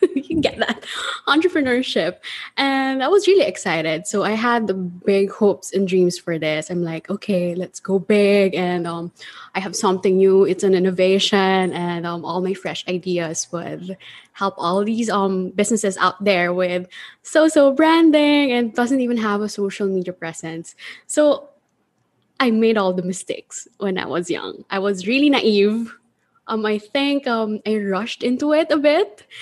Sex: female